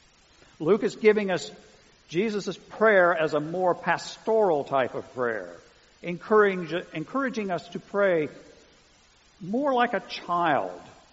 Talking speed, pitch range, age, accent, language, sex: 120 wpm, 145-215 Hz, 50-69, American, English, male